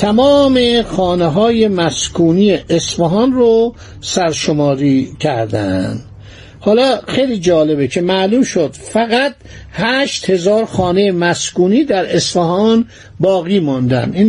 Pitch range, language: 160-215 Hz, Persian